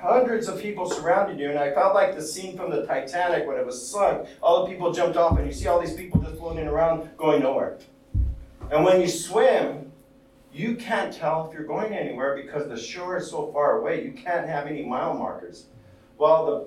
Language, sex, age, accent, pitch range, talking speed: English, male, 40-59, American, 140-180 Hz, 215 wpm